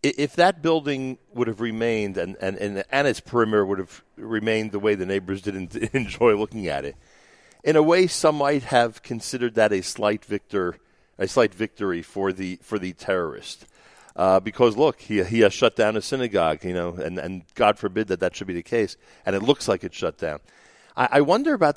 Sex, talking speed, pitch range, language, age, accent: male, 210 wpm, 95-130 Hz, English, 50-69, American